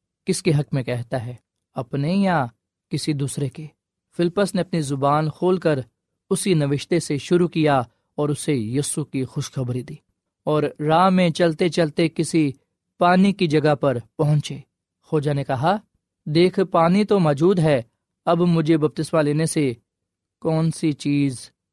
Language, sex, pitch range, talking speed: Urdu, male, 135-170 Hz, 150 wpm